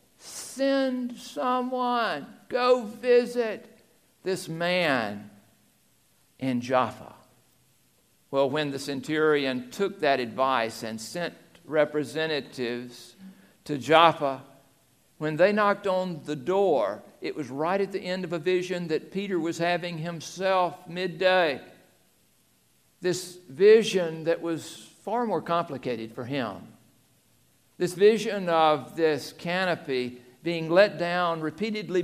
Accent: American